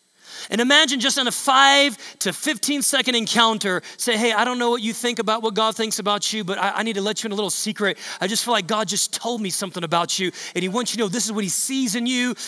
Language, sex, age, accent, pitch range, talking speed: English, male, 30-49, American, 190-240 Hz, 285 wpm